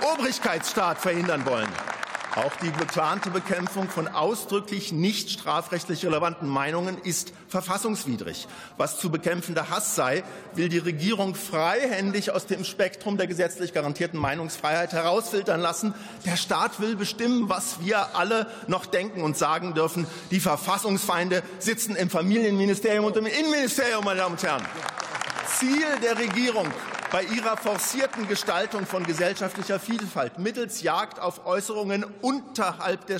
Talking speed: 130 wpm